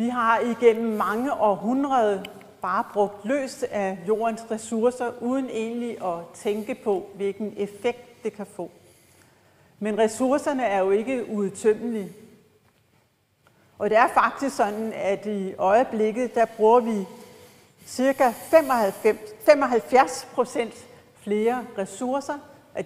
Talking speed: 115 wpm